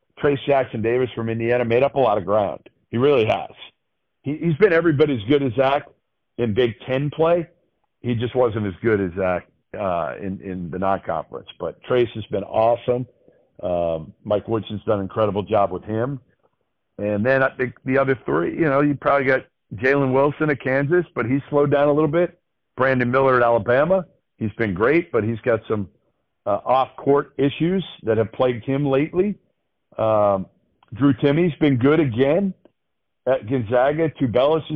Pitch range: 110-140 Hz